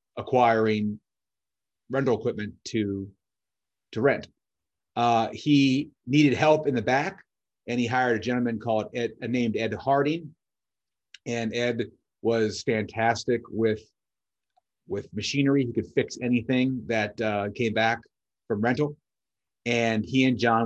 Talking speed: 130 wpm